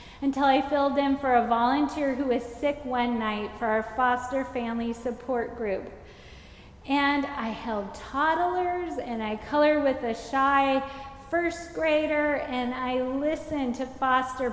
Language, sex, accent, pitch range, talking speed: English, female, American, 235-275 Hz, 145 wpm